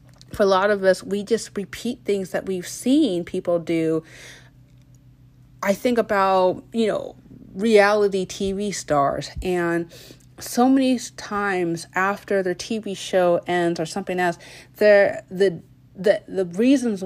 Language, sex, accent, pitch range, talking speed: English, female, American, 155-200 Hz, 135 wpm